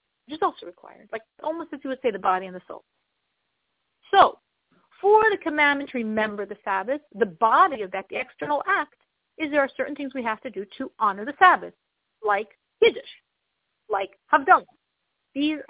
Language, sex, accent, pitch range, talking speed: English, female, American, 230-355 Hz, 180 wpm